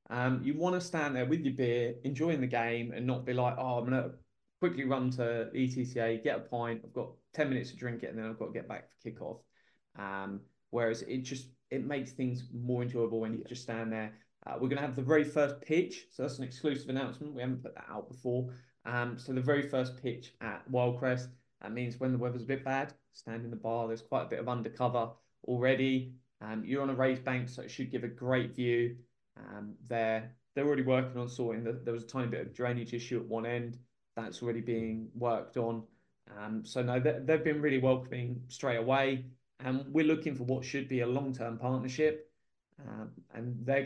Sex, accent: male, British